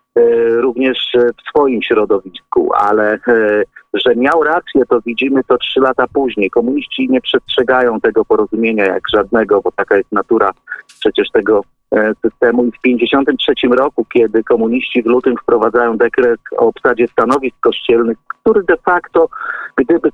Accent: native